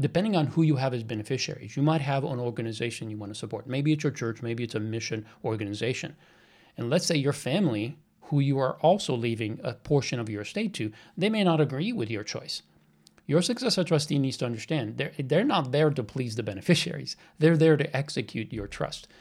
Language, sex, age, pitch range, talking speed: English, male, 40-59, 115-155 Hz, 210 wpm